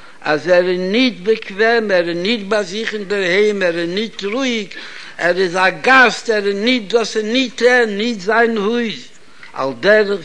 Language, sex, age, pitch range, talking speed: Hebrew, male, 60-79, 175-220 Hz, 175 wpm